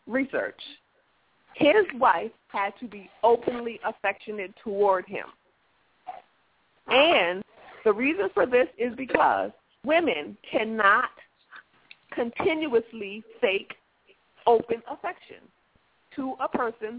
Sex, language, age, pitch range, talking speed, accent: female, English, 40-59, 190-260 Hz, 90 wpm, American